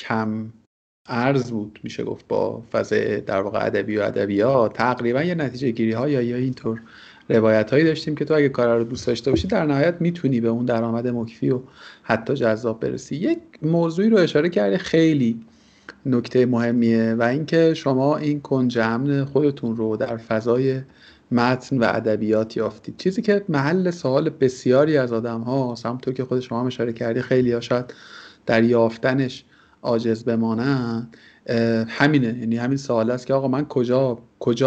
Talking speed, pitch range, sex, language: 155 wpm, 115-135 Hz, male, Persian